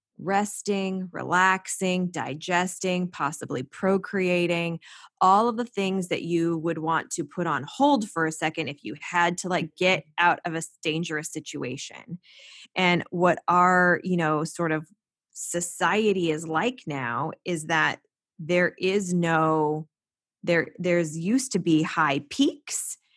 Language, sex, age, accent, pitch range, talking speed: English, female, 20-39, American, 155-180 Hz, 140 wpm